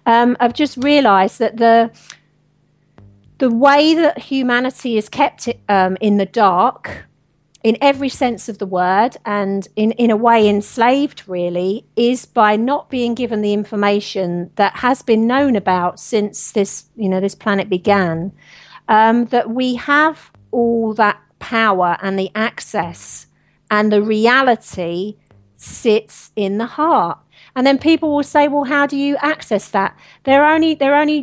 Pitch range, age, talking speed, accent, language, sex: 205-260 Hz, 40-59, 160 wpm, British, English, female